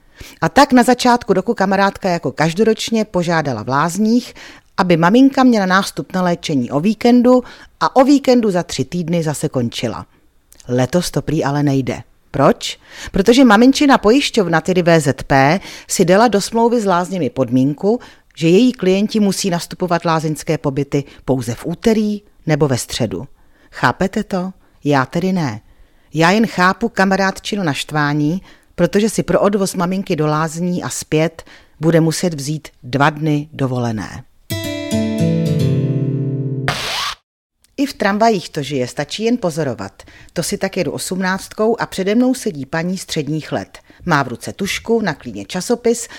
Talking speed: 140 wpm